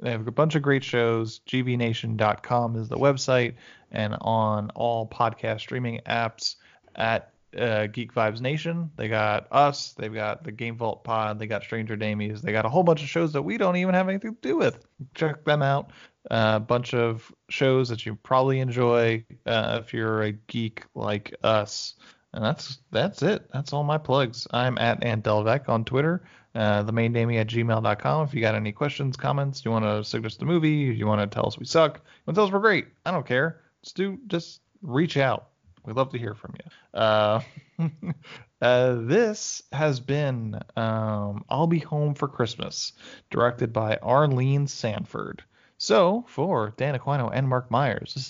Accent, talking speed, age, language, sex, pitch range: American, 190 wpm, 20-39, English, male, 110-145 Hz